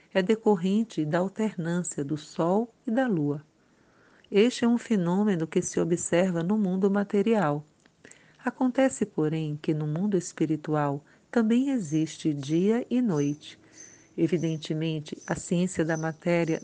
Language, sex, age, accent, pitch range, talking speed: Portuguese, female, 50-69, Brazilian, 160-205 Hz, 125 wpm